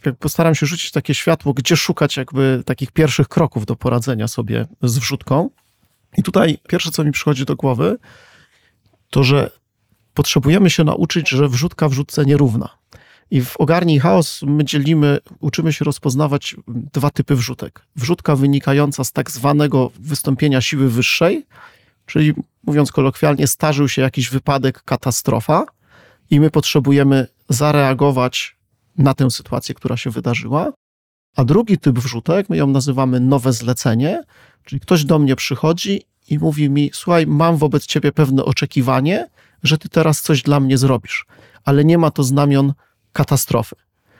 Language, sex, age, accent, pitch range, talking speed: Polish, male, 40-59, native, 135-160 Hz, 145 wpm